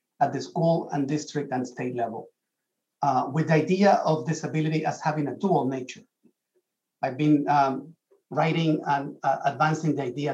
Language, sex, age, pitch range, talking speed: English, male, 50-69, 140-170 Hz, 165 wpm